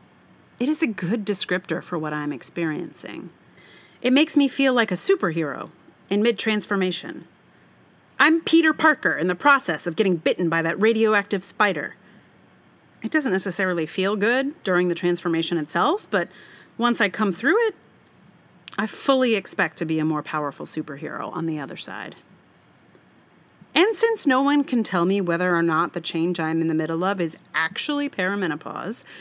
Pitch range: 170-255 Hz